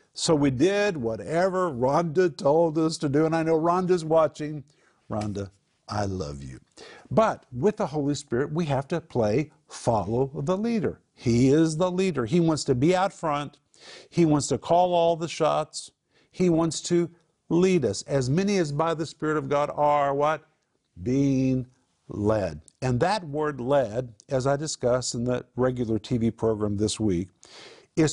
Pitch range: 125-160 Hz